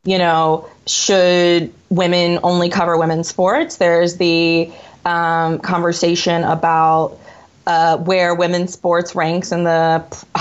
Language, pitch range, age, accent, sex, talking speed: English, 160-180 Hz, 20-39, American, female, 120 wpm